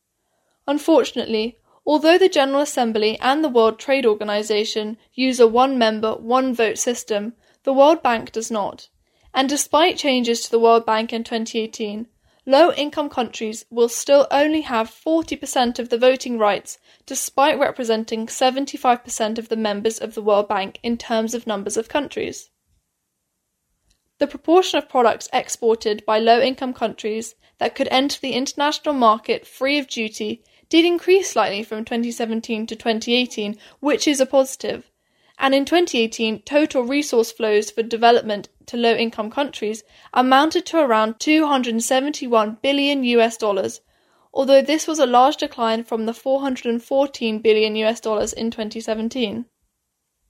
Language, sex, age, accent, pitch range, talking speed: English, female, 10-29, British, 225-275 Hz, 145 wpm